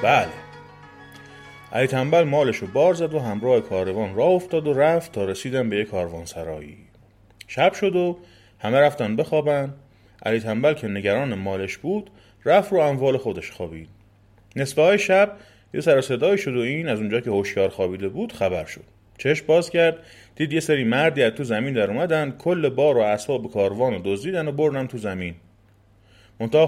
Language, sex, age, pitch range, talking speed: Persian, male, 30-49, 100-155 Hz, 165 wpm